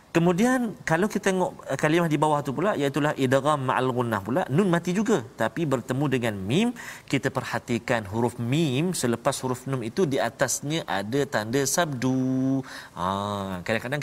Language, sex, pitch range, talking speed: Malayalam, male, 115-160 Hz, 155 wpm